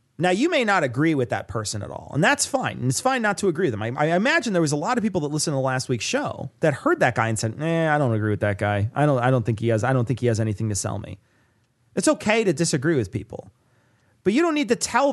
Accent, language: American, English